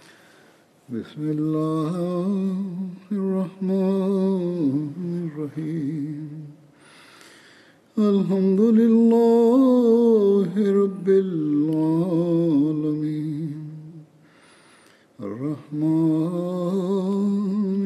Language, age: English, 50-69